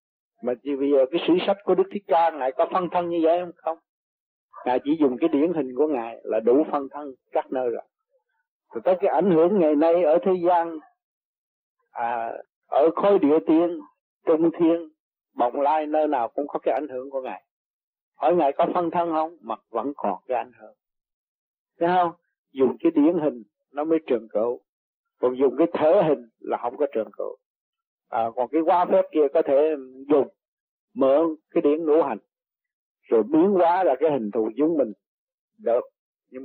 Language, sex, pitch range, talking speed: Vietnamese, male, 140-205 Hz, 195 wpm